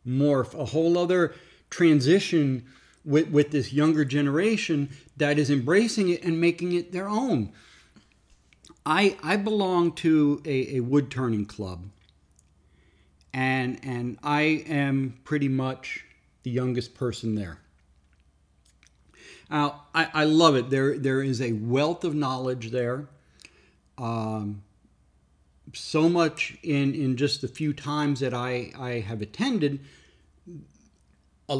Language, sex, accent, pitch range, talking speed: English, male, American, 100-150 Hz, 125 wpm